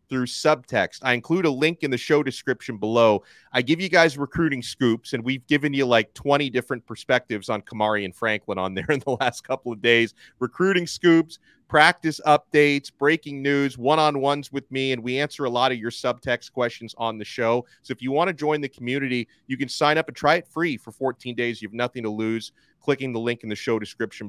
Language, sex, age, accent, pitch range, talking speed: English, male, 30-49, American, 115-145 Hz, 220 wpm